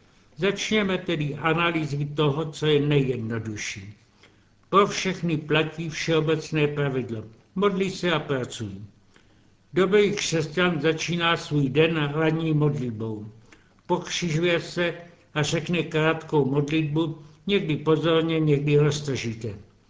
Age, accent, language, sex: 70-89, native, Czech, male